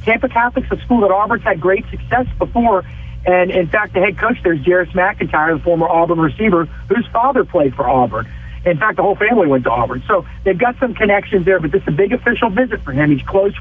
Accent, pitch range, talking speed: American, 160-205 Hz, 235 wpm